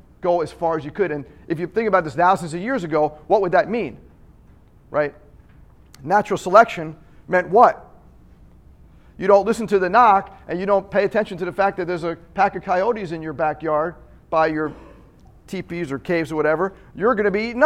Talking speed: 205 wpm